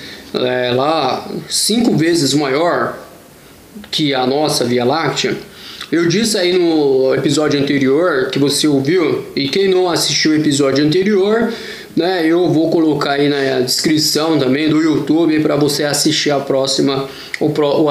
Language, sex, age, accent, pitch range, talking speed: Portuguese, male, 20-39, Brazilian, 140-185 Hz, 145 wpm